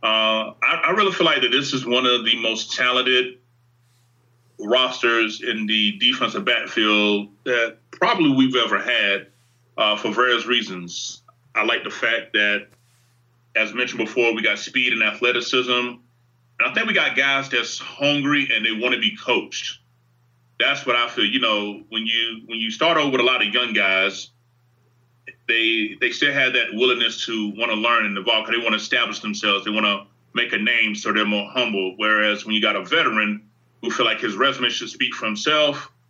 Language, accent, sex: English, American, male